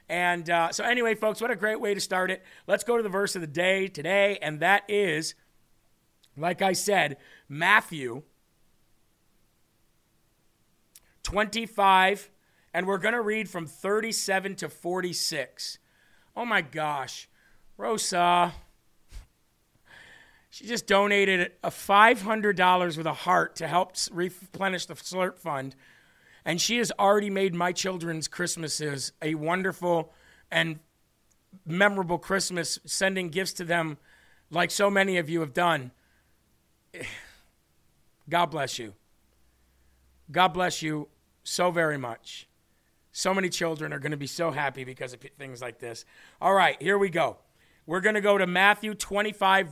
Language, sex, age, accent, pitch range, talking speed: English, male, 40-59, American, 160-195 Hz, 140 wpm